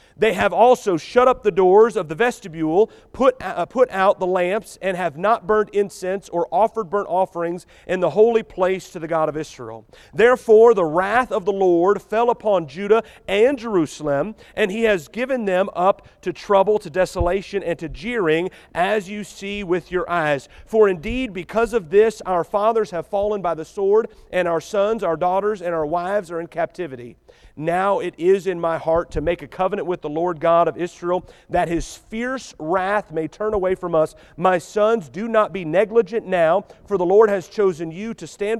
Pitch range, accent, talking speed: 160-210 Hz, American, 195 wpm